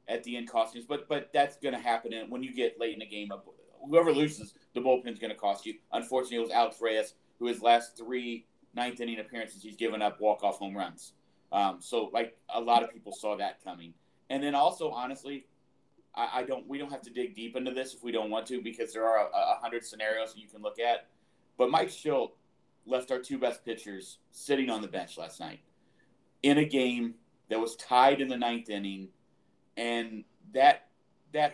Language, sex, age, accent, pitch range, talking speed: English, male, 40-59, American, 115-135 Hz, 220 wpm